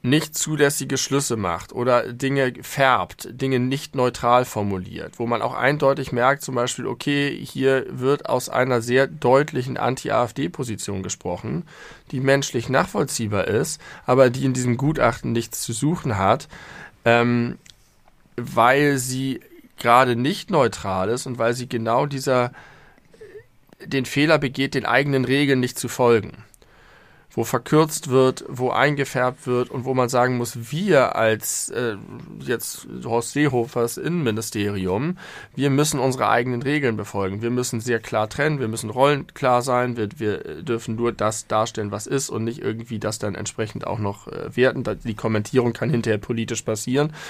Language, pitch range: German, 115-135 Hz